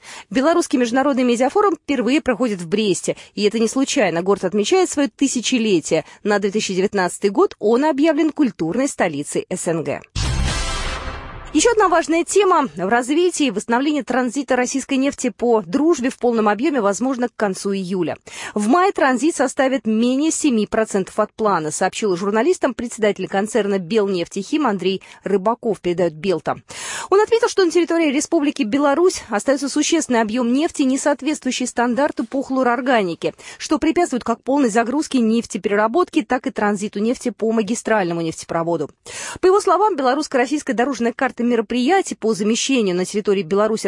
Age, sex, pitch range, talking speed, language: 20-39, female, 200-285 Hz, 140 wpm, Russian